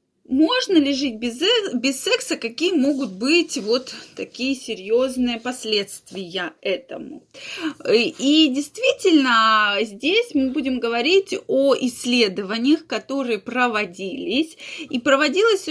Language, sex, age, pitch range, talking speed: Russian, female, 20-39, 230-315 Hz, 100 wpm